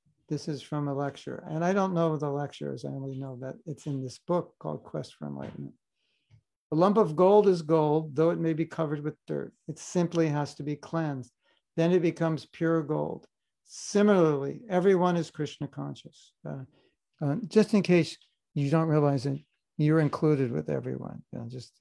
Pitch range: 145-180 Hz